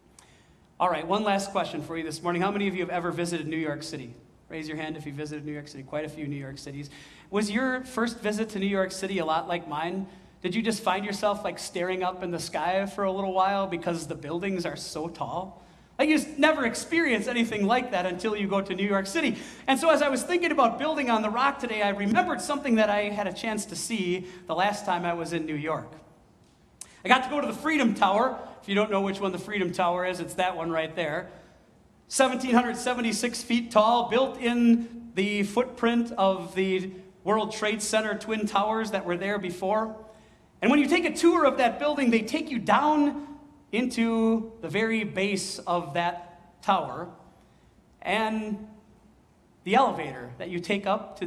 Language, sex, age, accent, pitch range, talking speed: English, male, 40-59, American, 180-235 Hz, 210 wpm